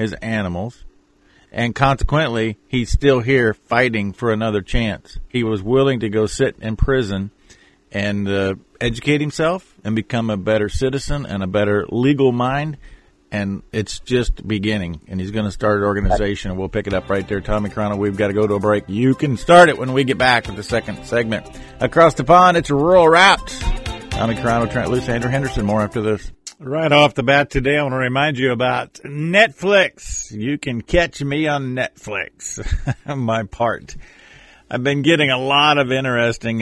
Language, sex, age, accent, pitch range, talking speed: English, male, 50-69, American, 105-130 Hz, 185 wpm